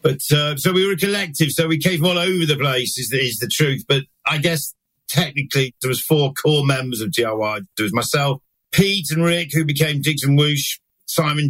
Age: 50-69